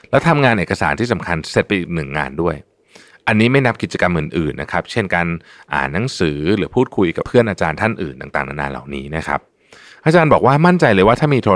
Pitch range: 85-120 Hz